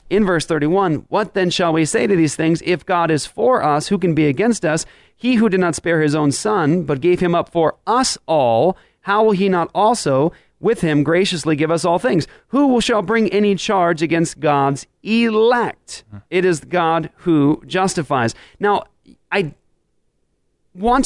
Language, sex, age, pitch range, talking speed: English, male, 30-49, 140-190 Hz, 180 wpm